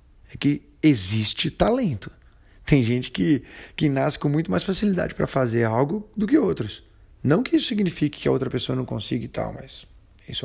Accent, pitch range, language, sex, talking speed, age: Brazilian, 115-170 Hz, Portuguese, male, 190 wpm, 20-39